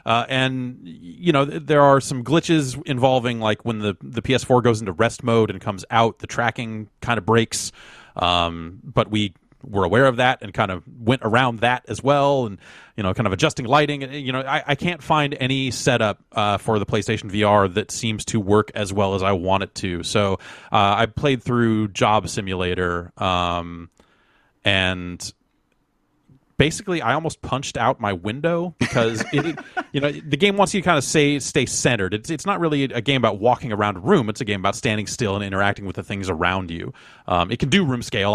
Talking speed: 205 wpm